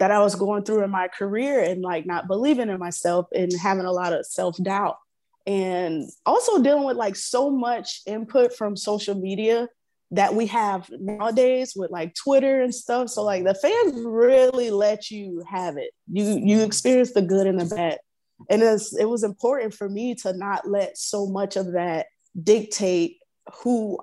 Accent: American